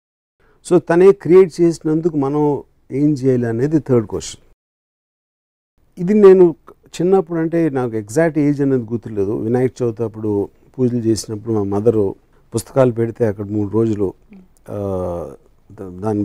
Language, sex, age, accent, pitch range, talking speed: Telugu, male, 50-69, native, 110-155 Hz, 120 wpm